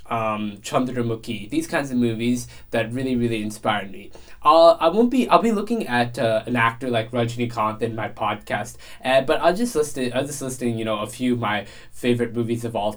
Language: English